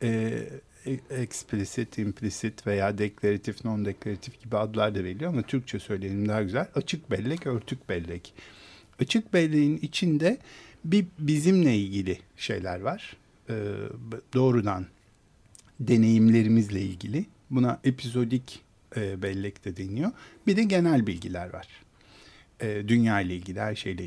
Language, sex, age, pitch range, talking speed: Turkish, male, 60-79, 100-150 Hz, 120 wpm